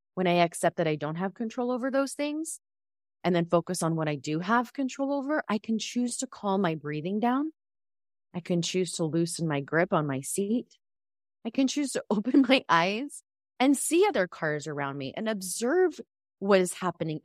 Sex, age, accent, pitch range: female, 30-49, American, 150-230 Hz